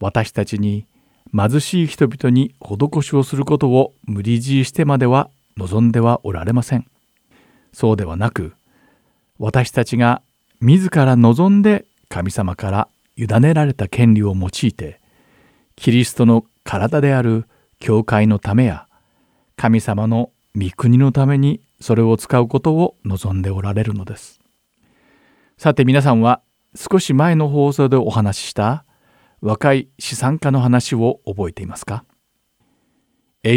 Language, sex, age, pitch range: Japanese, male, 50-69, 110-135 Hz